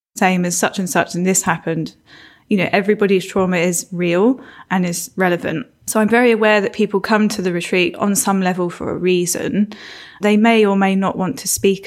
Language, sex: English, female